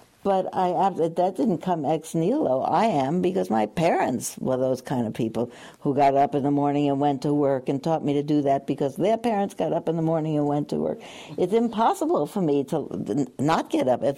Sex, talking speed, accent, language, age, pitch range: female, 225 wpm, American, English, 60-79, 140-210 Hz